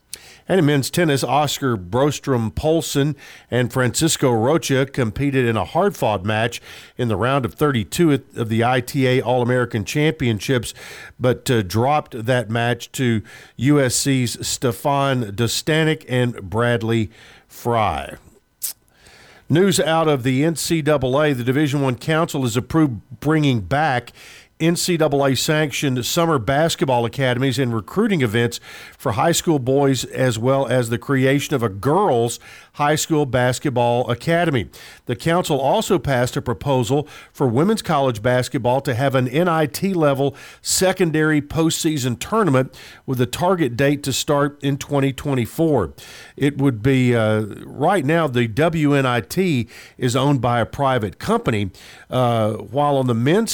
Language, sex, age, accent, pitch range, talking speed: English, male, 50-69, American, 120-150 Hz, 130 wpm